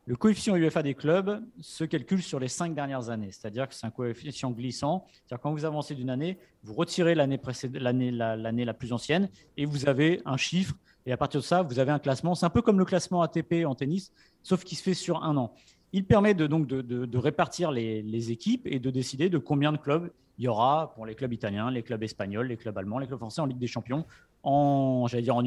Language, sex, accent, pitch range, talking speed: French, male, French, 125-175 Hz, 245 wpm